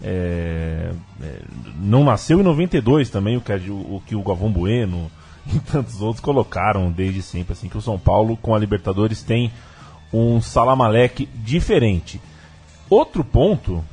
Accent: Brazilian